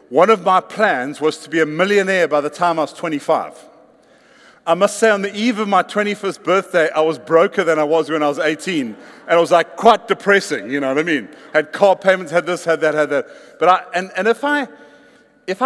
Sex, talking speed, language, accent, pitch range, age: male, 240 wpm, English, British, 145-190 Hz, 50-69